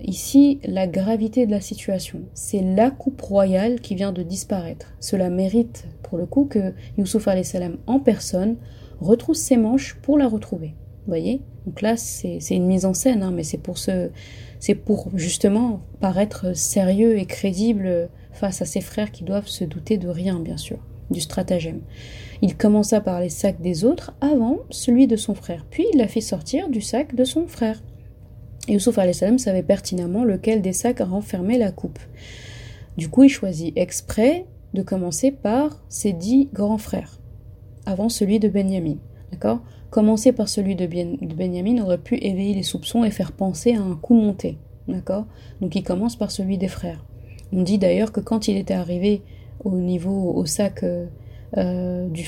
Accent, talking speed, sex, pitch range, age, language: French, 180 wpm, female, 180-225 Hz, 30-49, French